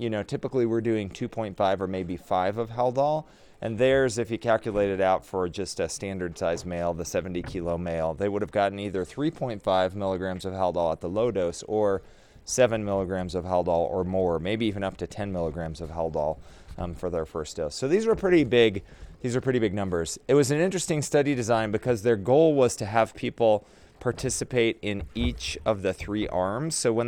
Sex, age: male, 30-49